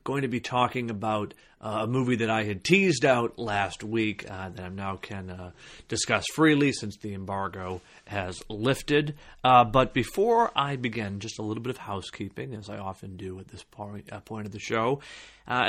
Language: English